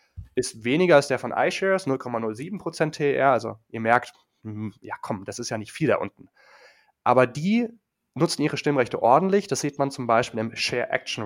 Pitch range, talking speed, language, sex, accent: 115-145 Hz, 180 wpm, German, male, German